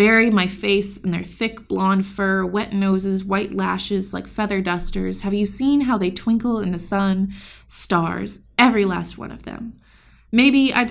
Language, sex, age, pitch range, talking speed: English, female, 20-39, 185-225 Hz, 175 wpm